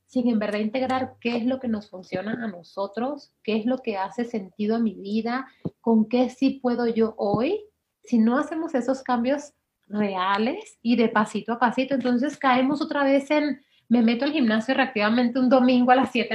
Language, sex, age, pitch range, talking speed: Spanish, female, 30-49, 210-260 Hz, 195 wpm